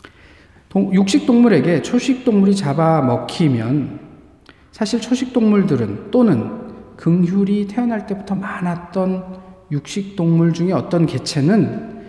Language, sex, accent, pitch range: Korean, male, native, 145-205 Hz